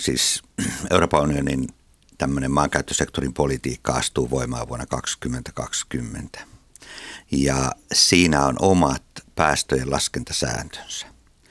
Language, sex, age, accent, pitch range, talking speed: Finnish, male, 60-79, native, 65-80 Hz, 85 wpm